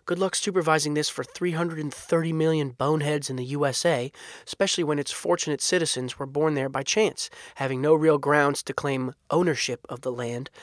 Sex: male